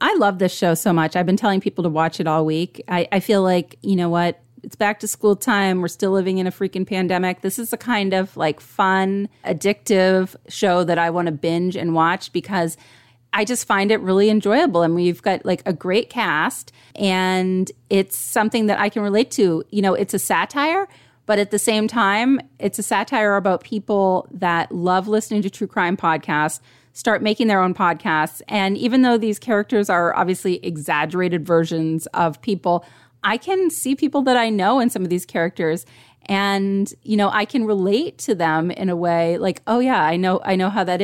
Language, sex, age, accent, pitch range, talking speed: English, female, 30-49, American, 175-215 Hz, 210 wpm